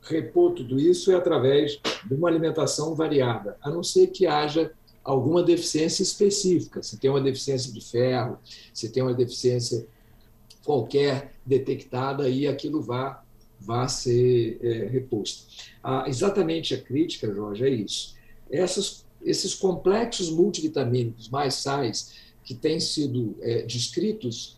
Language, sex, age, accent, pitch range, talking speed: Portuguese, male, 50-69, Brazilian, 120-160 Hz, 130 wpm